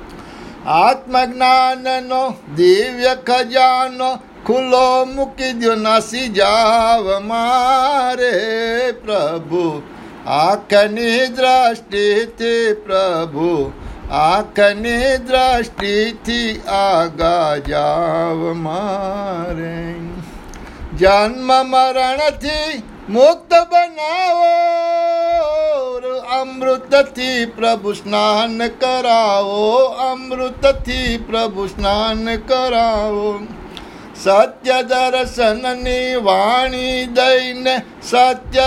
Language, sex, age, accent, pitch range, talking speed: Gujarati, male, 60-79, native, 200-255 Hz, 55 wpm